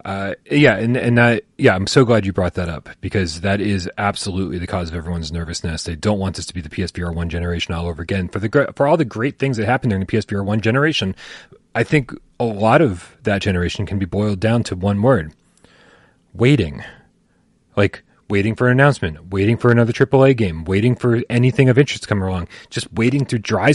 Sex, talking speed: male, 215 wpm